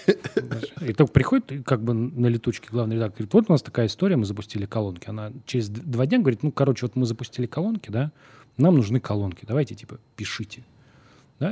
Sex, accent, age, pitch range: male, native, 30-49, 110-135 Hz